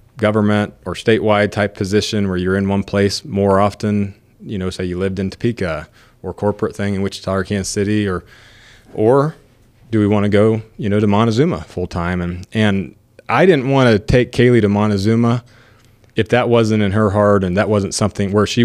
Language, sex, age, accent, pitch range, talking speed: English, male, 30-49, American, 100-115 Hz, 200 wpm